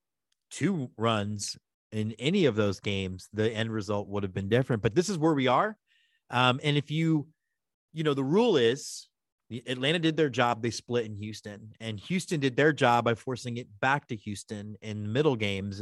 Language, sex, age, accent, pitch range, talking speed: English, male, 30-49, American, 110-145 Hz, 195 wpm